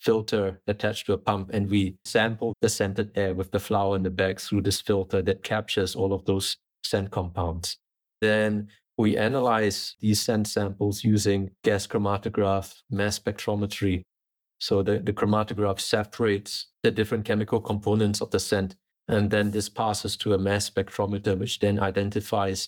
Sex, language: male, English